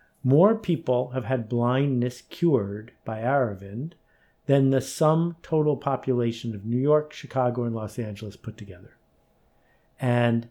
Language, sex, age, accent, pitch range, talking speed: English, male, 50-69, American, 110-140 Hz, 130 wpm